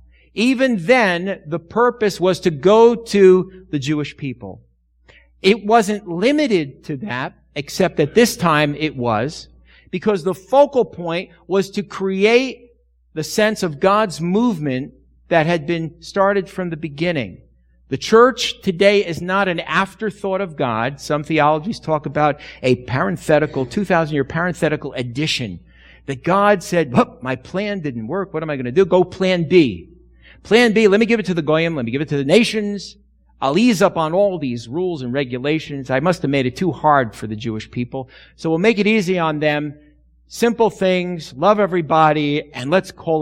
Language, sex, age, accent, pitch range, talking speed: English, male, 50-69, American, 130-200 Hz, 175 wpm